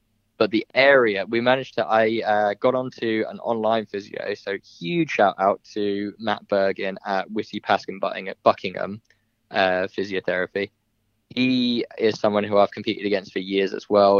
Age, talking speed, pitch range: 20-39, 155 wpm, 100-115 Hz